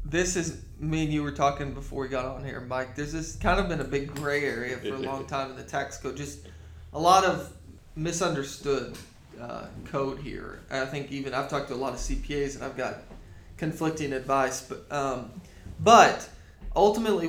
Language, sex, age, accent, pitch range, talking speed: English, male, 20-39, American, 130-145 Hz, 200 wpm